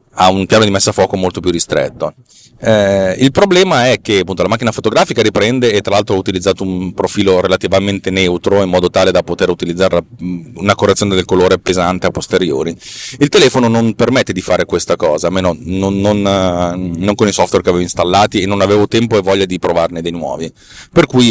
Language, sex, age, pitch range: Italian, male, 30-49, 90-115 Hz